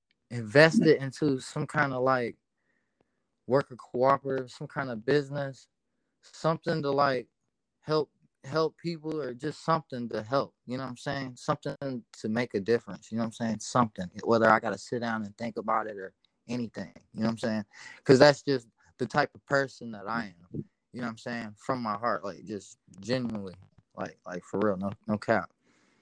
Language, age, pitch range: English, 20-39, 115-140 Hz